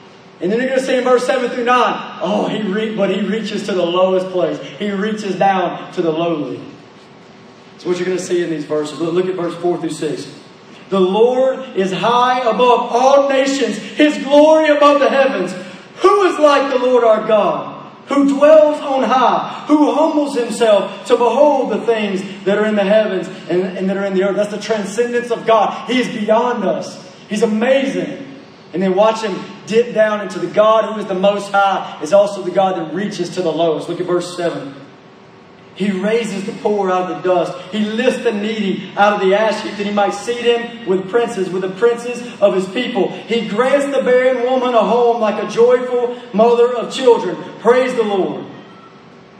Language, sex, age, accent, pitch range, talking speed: English, male, 30-49, American, 190-245 Hz, 205 wpm